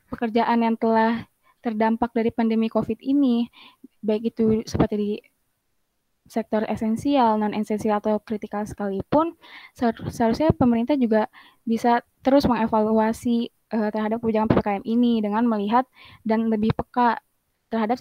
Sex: female